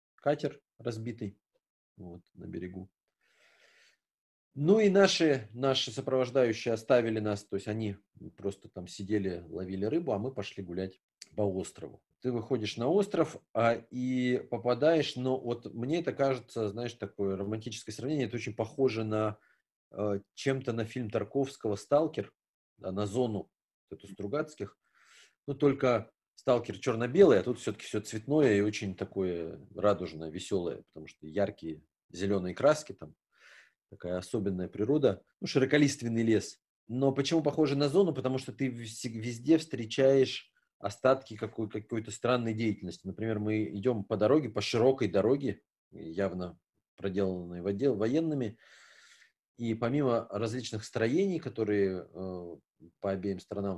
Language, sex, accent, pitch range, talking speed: Russian, male, native, 100-130 Hz, 130 wpm